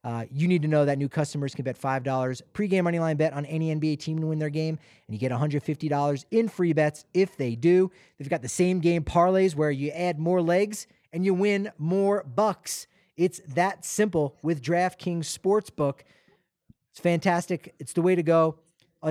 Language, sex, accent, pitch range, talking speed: English, male, American, 140-180 Hz, 200 wpm